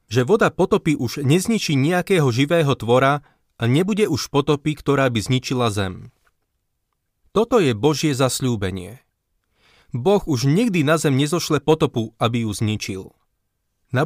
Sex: male